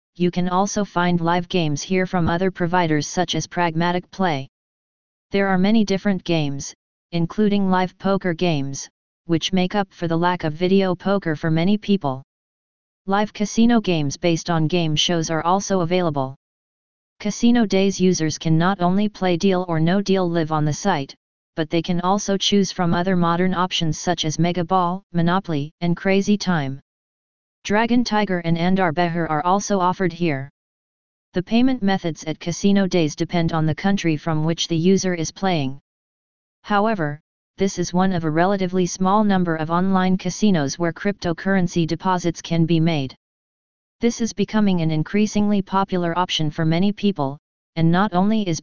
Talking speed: 165 wpm